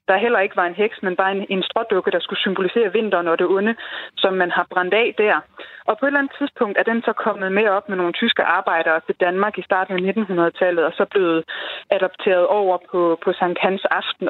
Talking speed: 235 wpm